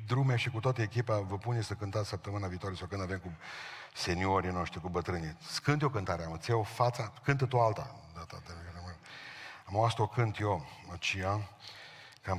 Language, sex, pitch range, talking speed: Romanian, male, 100-140 Hz, 165 wpm